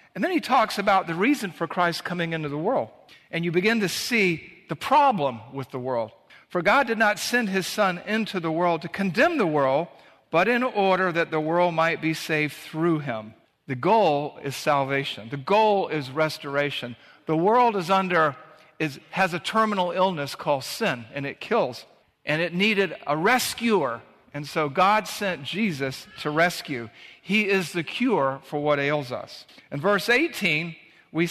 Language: English